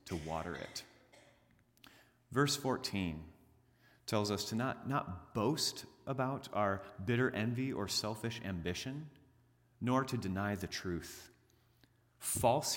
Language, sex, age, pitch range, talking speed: English, male, 30-49, 95-125 Hz, 115 wpm